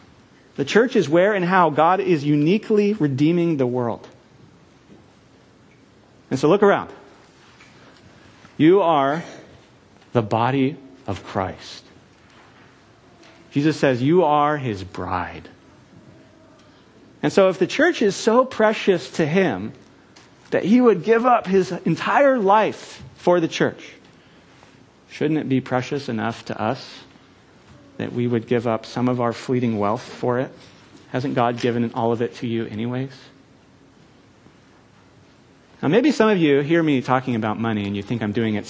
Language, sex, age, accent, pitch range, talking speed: English, male, 40-59, American, 115-170 Hz, 145 wpm